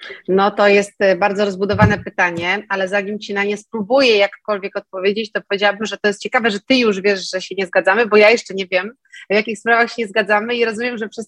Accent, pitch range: native, 190-225 Hz